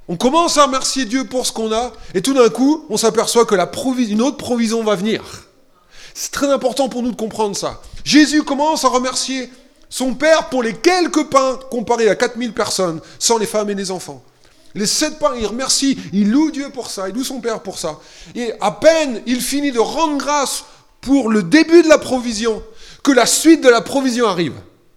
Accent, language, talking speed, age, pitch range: French, French, 210 wpm, 30-49, 225-295 Hz